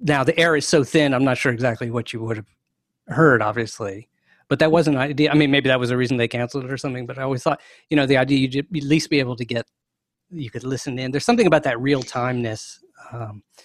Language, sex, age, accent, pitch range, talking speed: English, male, 40-59, American, 120-150 Hz, 260 wpm